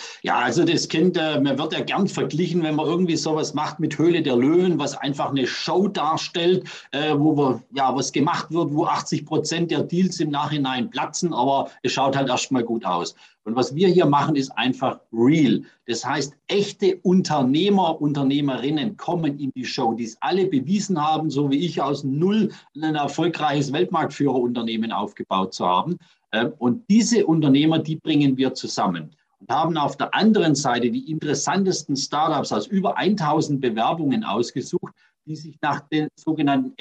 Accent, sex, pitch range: German, male, 135-170 Hz